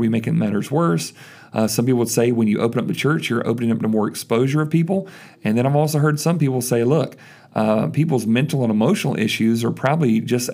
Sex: male